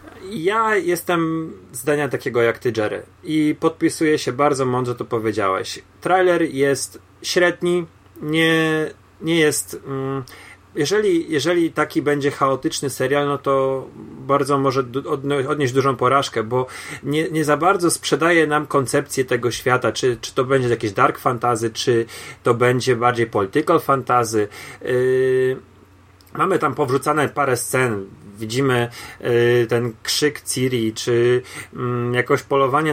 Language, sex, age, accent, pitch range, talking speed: Polish, male, 30-49, native, 120-145 Hz, 135 wpm